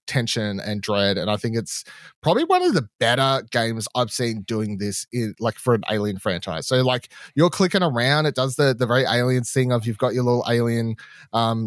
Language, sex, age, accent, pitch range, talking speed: English, male, 20-39, Australian, 115-140 Hz, 215 wpm